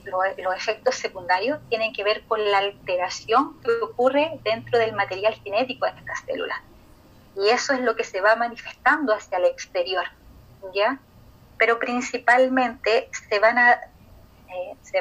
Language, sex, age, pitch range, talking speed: Spanish, female, 30-49, 180-220 Hz, 150 wpm